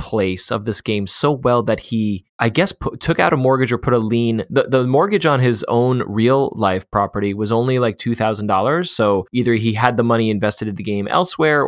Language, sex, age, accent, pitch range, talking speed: English, male, 20-39, American, 105-130 Hz, 230 wpm